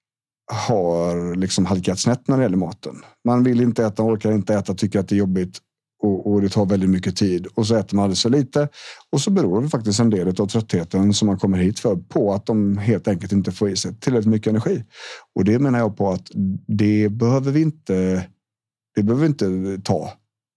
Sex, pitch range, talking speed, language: male, 95-120 Hz, 220 wpm, Swedish